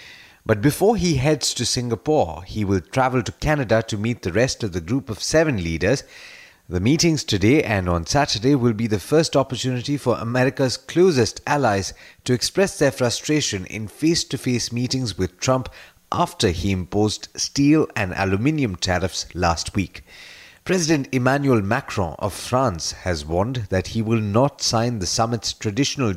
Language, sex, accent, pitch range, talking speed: English, male, Indian, 100-135 Hz, 160 wpm